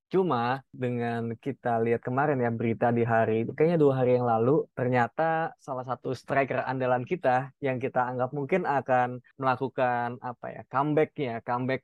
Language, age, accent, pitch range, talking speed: Indonesian, 20-39, native, 125-155 Hz, 155 wpm